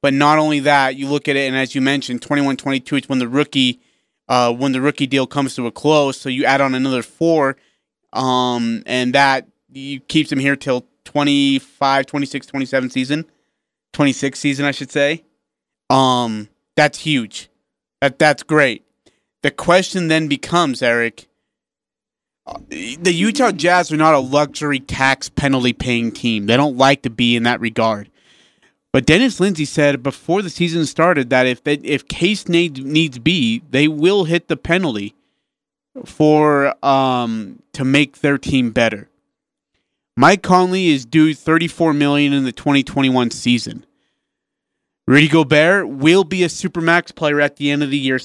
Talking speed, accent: 160 wpm, American